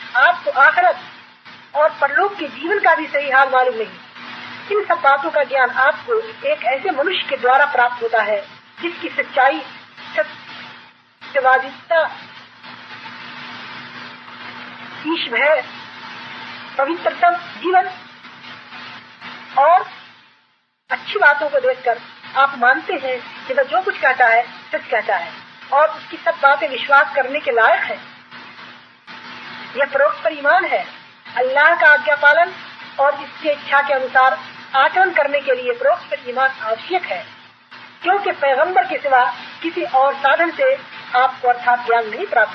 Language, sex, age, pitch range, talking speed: Hindi, female, 40-59, 265-330 Hz, 125 wpm